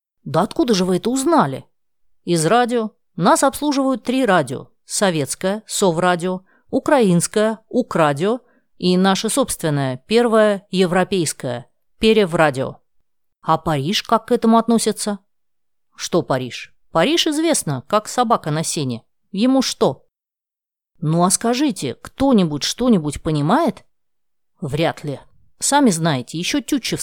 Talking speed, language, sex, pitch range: 110 wpm, Russian, female, 155-230 Hz